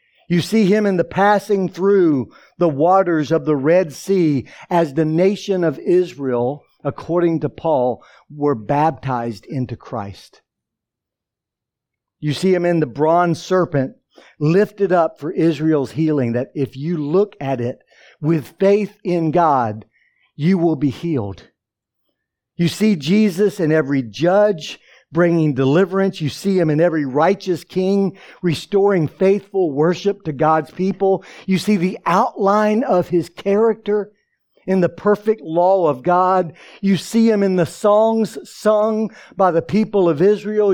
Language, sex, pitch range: English, male, 155-200 Hz